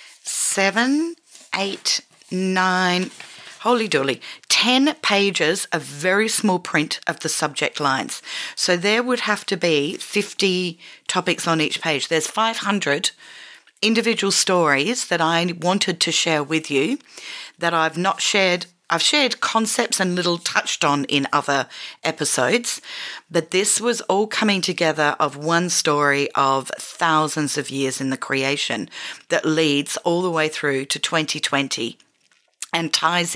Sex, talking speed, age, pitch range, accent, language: female, 140 wpm, 40-59, 150-210 Hz, Australian, English